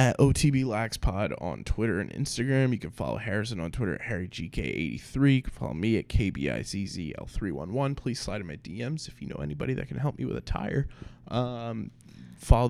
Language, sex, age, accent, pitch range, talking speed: English, male, 20-39, American, 105-140 Hz, 200 wpm